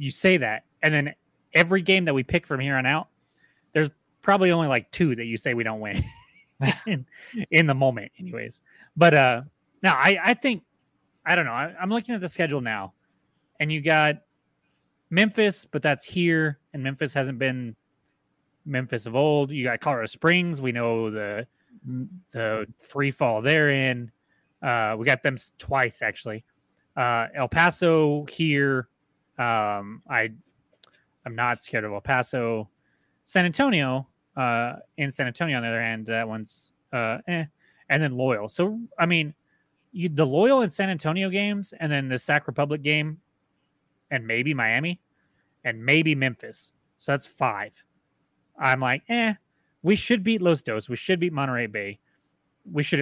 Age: 20-39